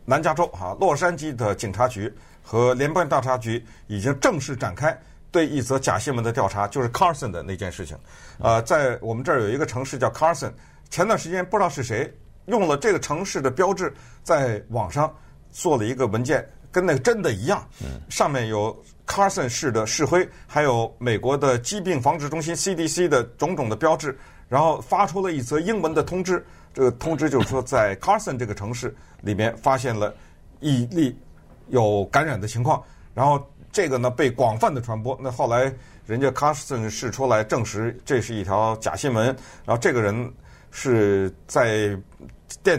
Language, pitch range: Chinese, 110-150 Hz